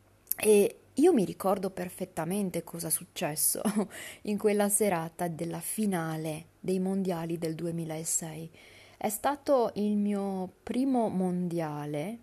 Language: Italian